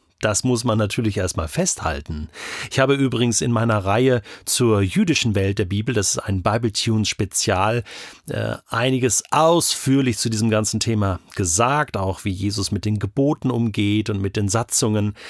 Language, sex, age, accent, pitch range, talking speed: German, male, 40-59, German, 105-140 Hz, 155 wpm